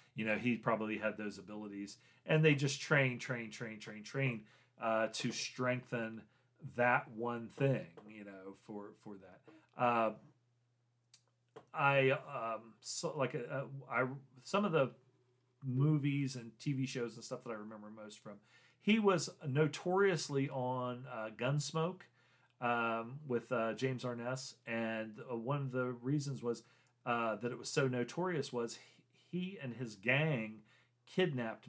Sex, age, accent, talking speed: male, 40-59, American, 140 wpm